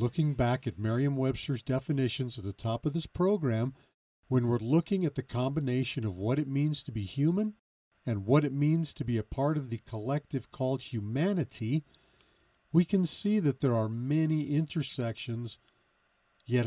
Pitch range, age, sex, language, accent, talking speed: 105-135 Hz, 50-69, male, English, American, 170 wpm